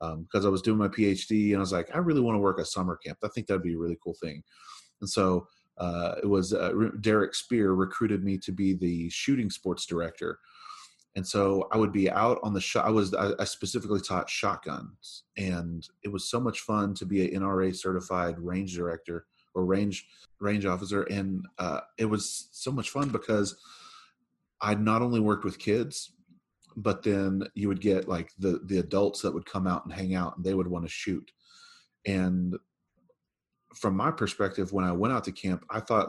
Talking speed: 205 wpm